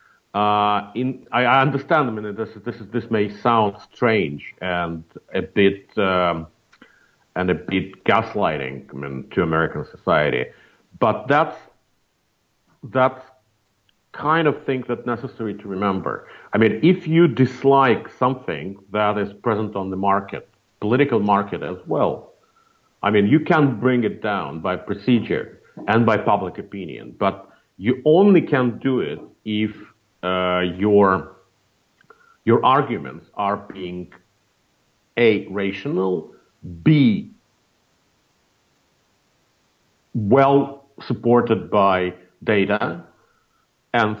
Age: 50-69